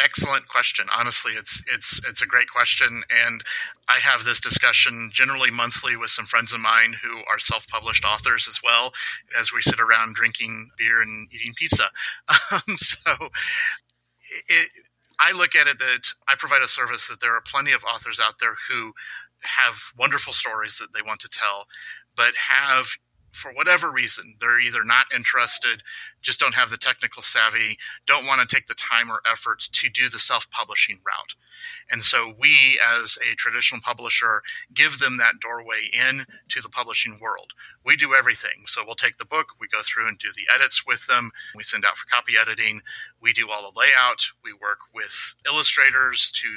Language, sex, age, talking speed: English, male, 30-49, 185 wpm